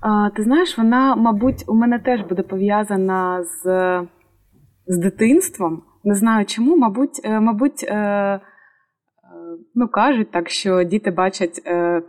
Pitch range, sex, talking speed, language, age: 190-240 Hz, female, 120 wpm, Ukrainian, 20-39